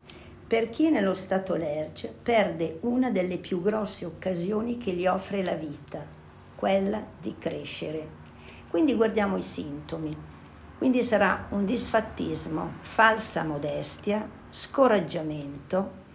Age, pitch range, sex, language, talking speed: 50-69, 160-210 Hz, female, Italian, 110 wpm